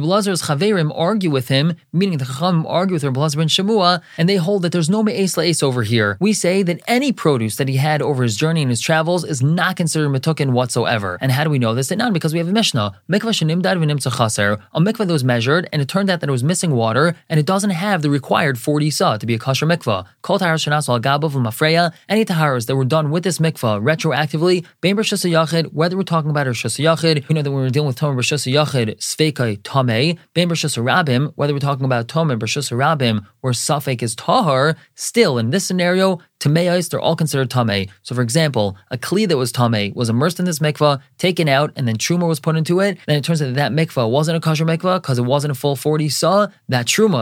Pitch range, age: 125-170 Hz, 20-39